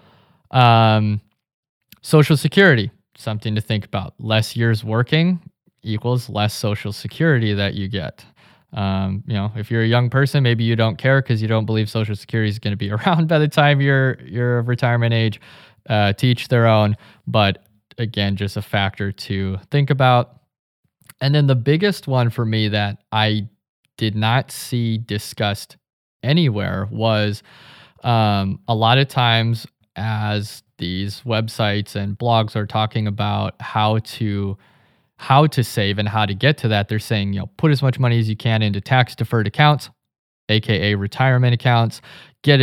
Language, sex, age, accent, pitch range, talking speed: English, male, 20-39, American, 105-130 Hz, 165 wpm